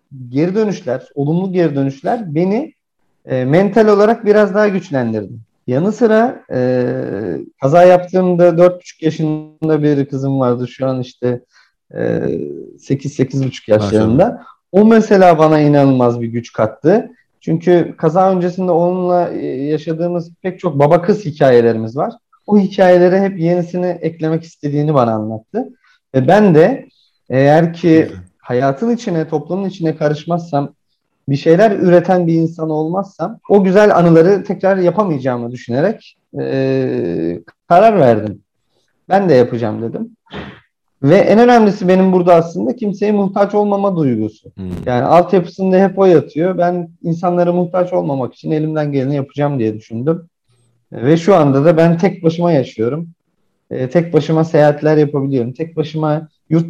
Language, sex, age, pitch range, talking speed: Turkish, male, 40-59, 135-185 Hz, 130 wpm